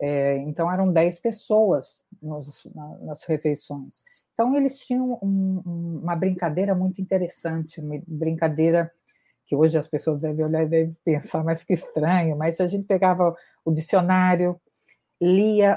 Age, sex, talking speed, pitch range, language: 50-69, female, 135 wpm, 160-195 Hz, English